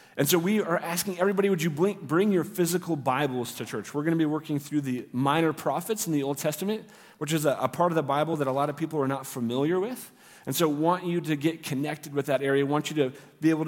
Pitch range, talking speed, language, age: 135-175 Hz, 260 wpm, English, 40-59